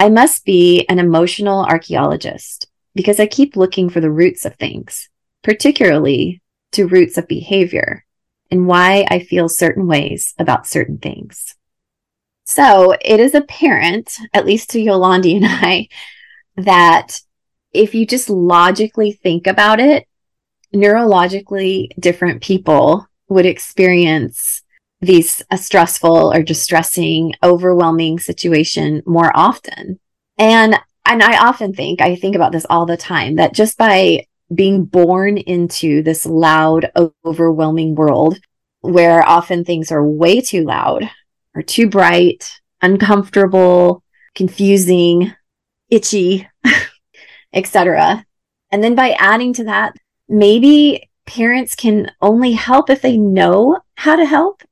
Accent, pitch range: American, 170-215 Hz